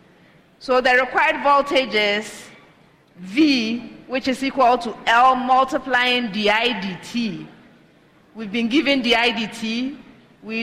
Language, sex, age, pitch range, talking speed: English, female, 40-59, 195-245 Hz, 115 wpm